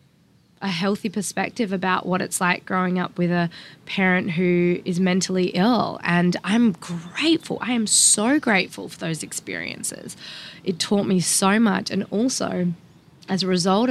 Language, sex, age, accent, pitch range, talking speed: English, female, 20-39, Australian, 170-195 Hz, 155 wpm